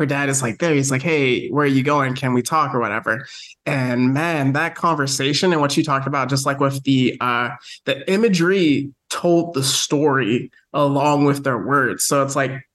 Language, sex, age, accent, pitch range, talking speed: English, male, 20-39, American, 130-155 Hz, 200 wpm